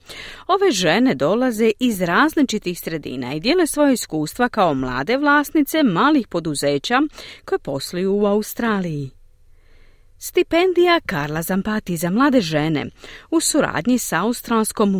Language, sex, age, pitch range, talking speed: Croatian, female, 40-59, 175-280 Hz, 115 wpm